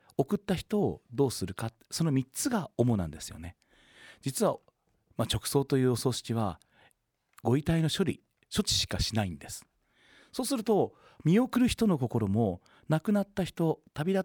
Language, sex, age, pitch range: Japanese, male, 40-59, 110-175 Hz